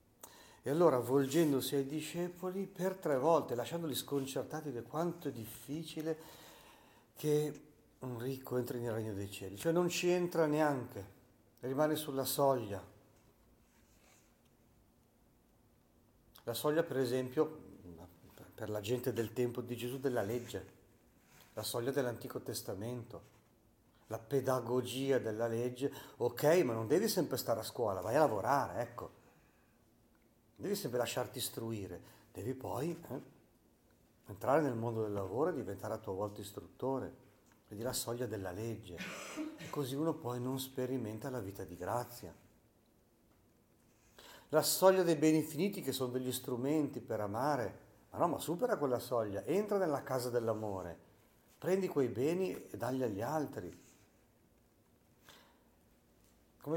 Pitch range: 110-145 Hz